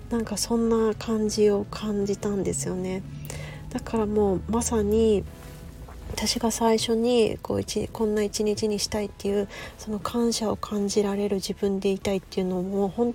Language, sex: Japanese, female